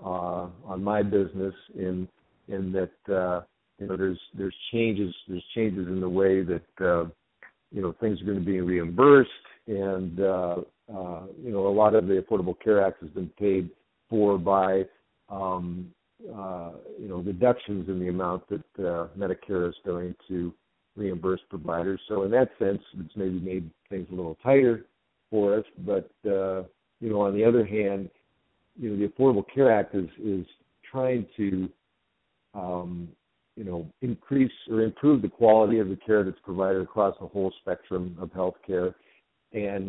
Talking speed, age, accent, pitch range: 170 wpm, 50-69, American, 90-105 Hz